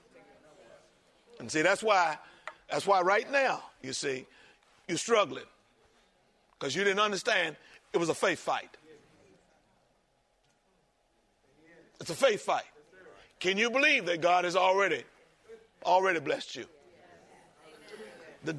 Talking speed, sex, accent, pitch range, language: 115 wpm, male, American, 175-260 Hz, English